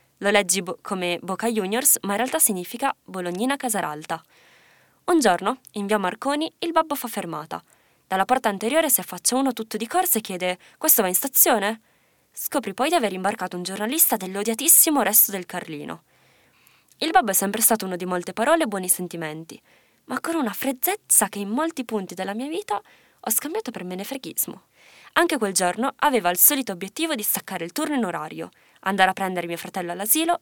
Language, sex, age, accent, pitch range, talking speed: Italian, female, 20-39, native, 185-280 Hz, 185 wpm